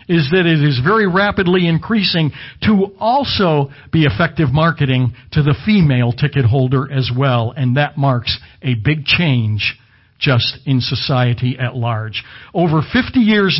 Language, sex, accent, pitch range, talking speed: English, male, American, 130-175 Hz, 145 wpm